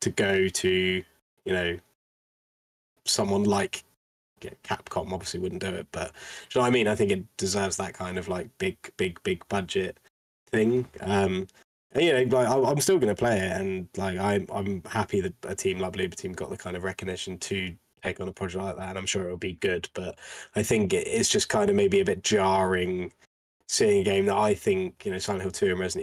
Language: English